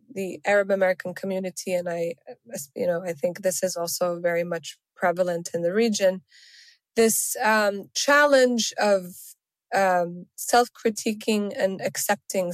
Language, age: English, 20-39